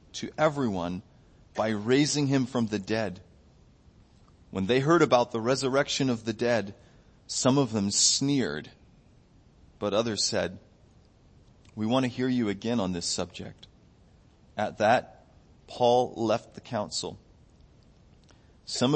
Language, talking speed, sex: English, 125 wpm, male